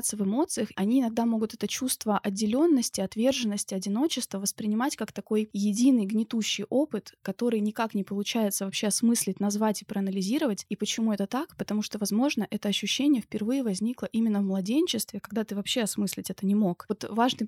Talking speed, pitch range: 165 wpm, 205-250 Hz